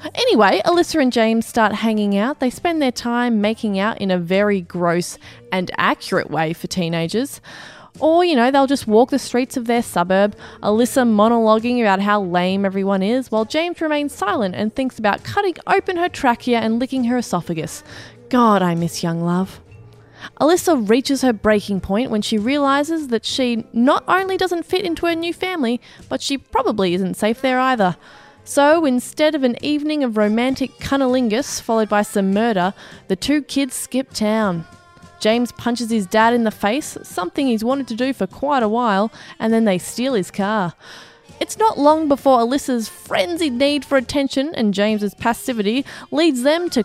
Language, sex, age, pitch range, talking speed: English, female, 20-39, 205-275 Hz, 180 wpm